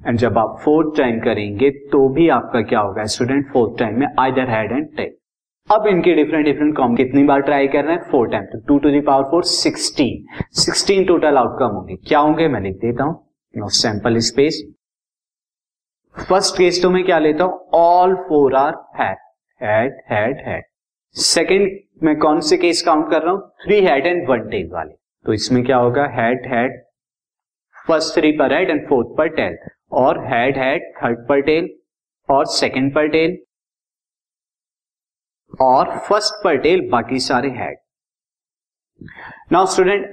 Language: Hindi